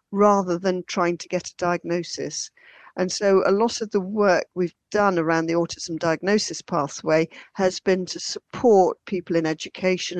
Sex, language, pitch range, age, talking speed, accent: female, English, 165-195 Hz, 40-59, 165 wpm, British